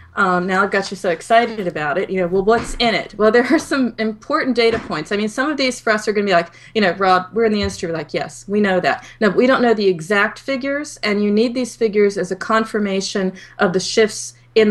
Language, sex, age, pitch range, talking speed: English, female, 40-59, 170-225 Hz, 270 wpm